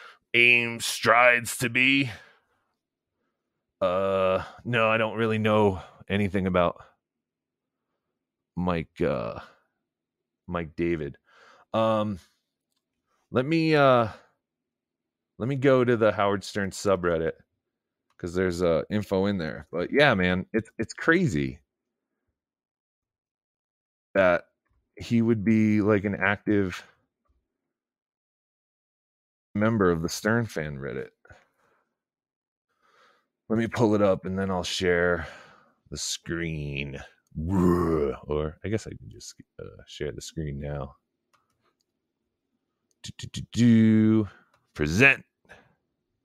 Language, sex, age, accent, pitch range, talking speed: English, male, 30-49, American, 90-115 Hz, 100 wpm